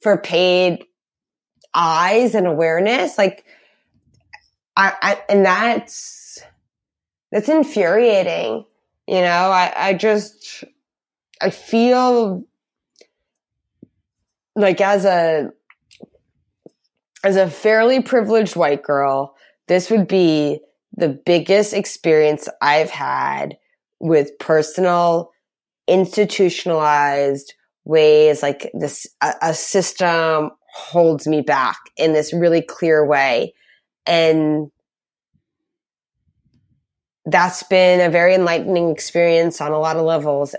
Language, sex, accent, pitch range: English, female, American, 155-195 Hz